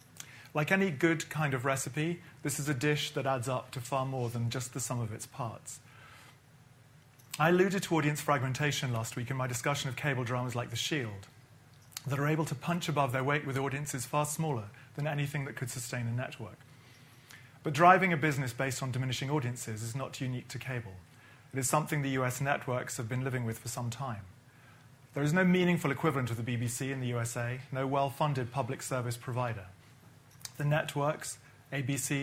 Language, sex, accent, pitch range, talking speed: English, male, British, 125-145 Hz, 190 wpm